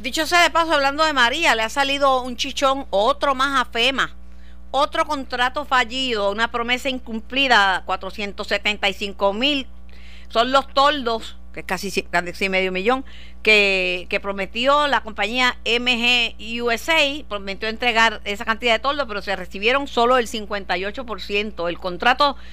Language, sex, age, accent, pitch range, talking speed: Spanish, female, 50-69, American, 185-245 Hz, 140 wpm